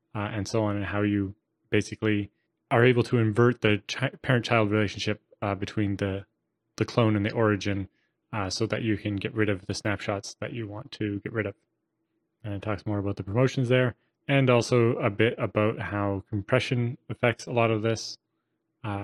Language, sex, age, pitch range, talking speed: English, male, 20-39, 100-120 Hz, 200 wpm